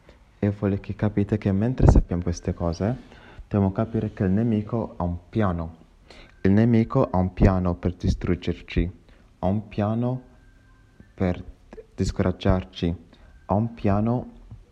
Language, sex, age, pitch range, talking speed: English, male, 30-49, 90-105 Hz, 135 wpm